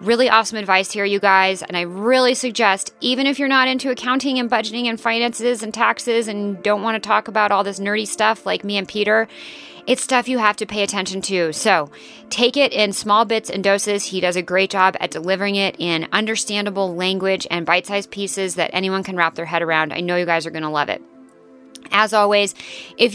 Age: 30-49